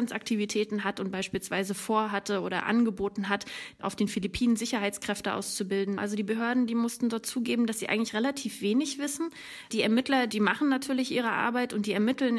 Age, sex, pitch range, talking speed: 30-49, female, 205-240 Hz, 175 wpm